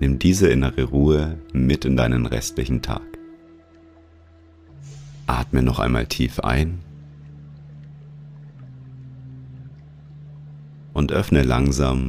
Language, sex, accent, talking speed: German, male, German, 85 wpm